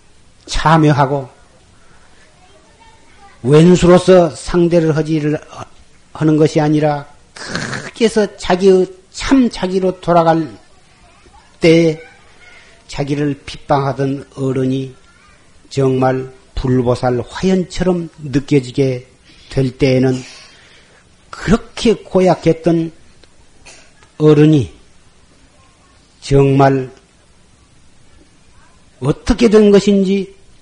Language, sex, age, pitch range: Korean, male, 40-59, 125-170 Hz